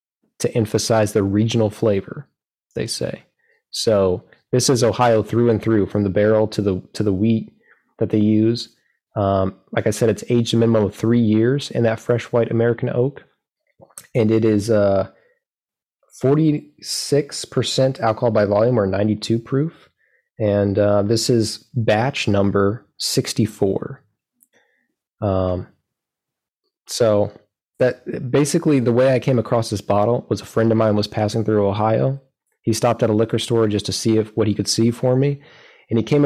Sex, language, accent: male, English, American